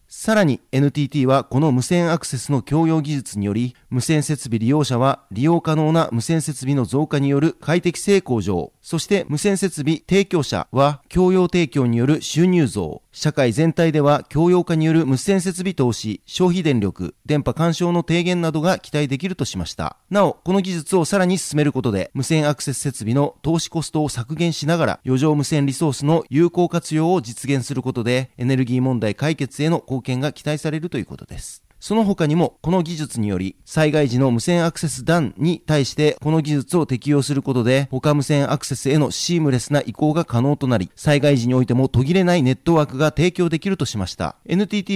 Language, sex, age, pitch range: Japanese, male, 40-59, 130-165 Hz